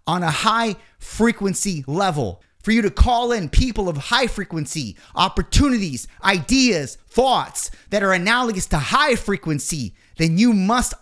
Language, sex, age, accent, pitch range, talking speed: English, male, 30-49, American, 160-225 Hz, 125 wpm